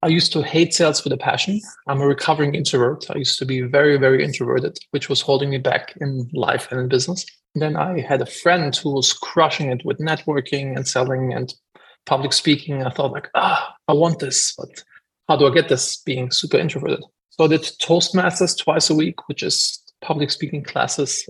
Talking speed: 210 wpm